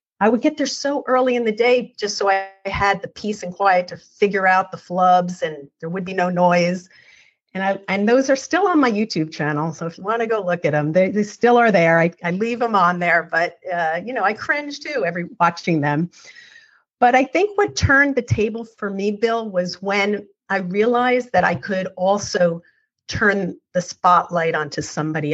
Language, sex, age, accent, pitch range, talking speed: English, female, 50-69, American, 175-225 Hz, 215 wpm